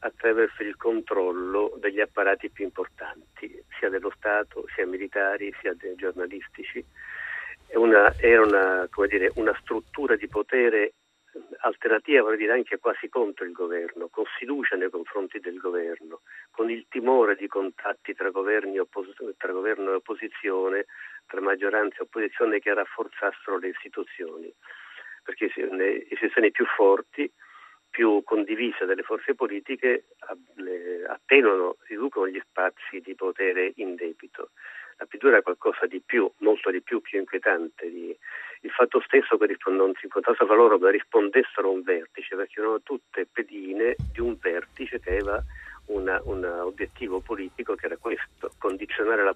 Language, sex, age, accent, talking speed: Italian, male, 50-69, native, 135 wpm